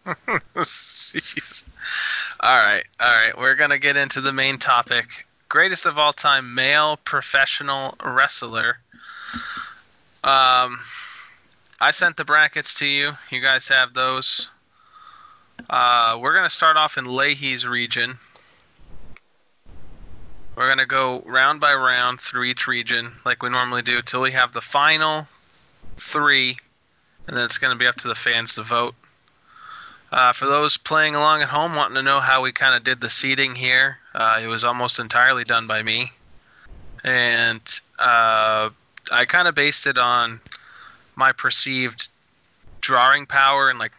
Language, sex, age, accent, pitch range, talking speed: English, male, 20-39, American, 115-145 Hz, 145 wpm